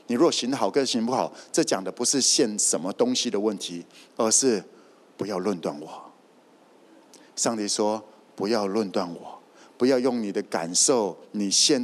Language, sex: Chinese, male